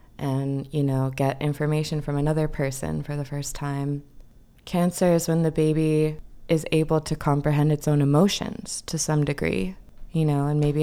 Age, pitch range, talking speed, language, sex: 20-39, 145-165 Hz, 170 wpm, English, female